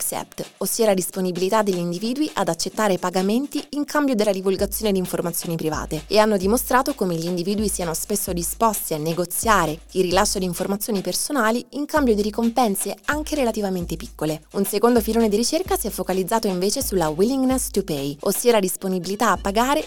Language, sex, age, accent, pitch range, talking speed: Italian, female, 20-39, native, 175-220 Hz, 170 wpm